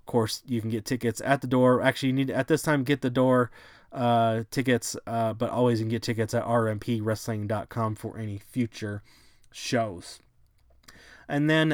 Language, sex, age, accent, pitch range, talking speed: English, male, 20-39, American, 115-140 Hz, 180 wpm